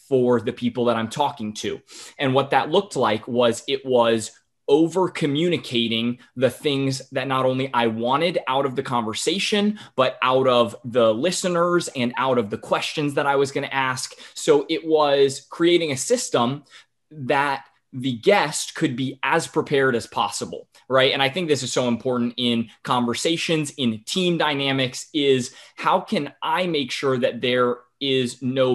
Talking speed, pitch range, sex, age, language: 170 wpm, 120-150 Hz, male, 20-39, English